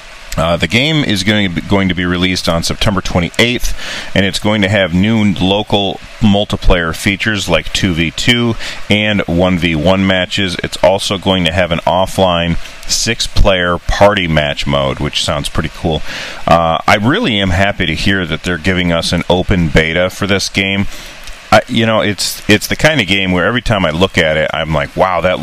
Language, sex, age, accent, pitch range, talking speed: English, male, 40-59, American, 85-105 Hz, 185 wpm